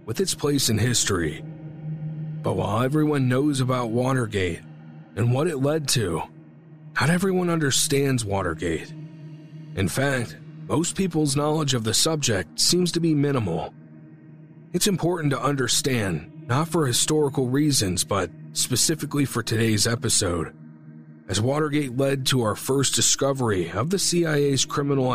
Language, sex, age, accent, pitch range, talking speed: English, male, 40-59, American, 110-155 Hz, 135 wpm